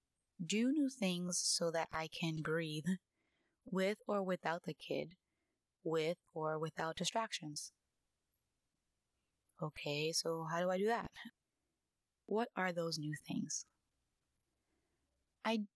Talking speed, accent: 115 wpm, American